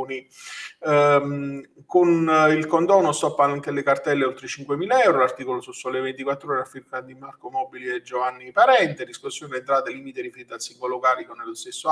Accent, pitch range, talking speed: native, 130-155 Hz, 165 wpm